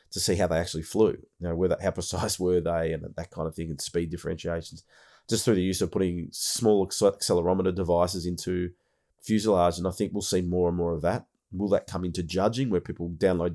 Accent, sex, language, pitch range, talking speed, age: Australian, male, English, 85-95 Hz, 215 wpm, 30-49